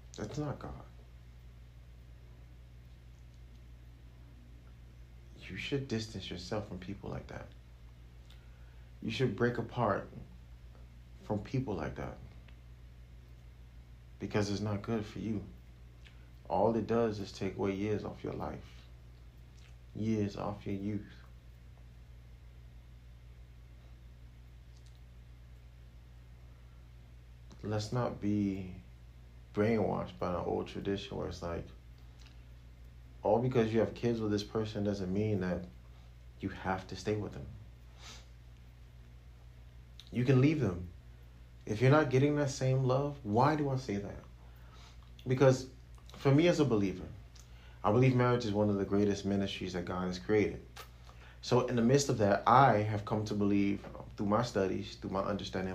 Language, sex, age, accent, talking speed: English, male, 30-49, American, 130 wpm